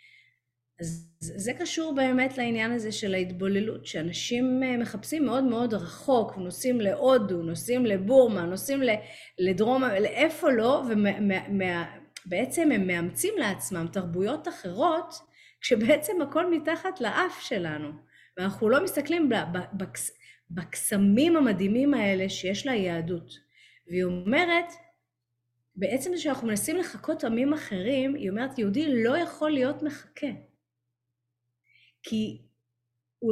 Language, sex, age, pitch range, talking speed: English, female, 30-49, 170-265 Hz, 105 wpm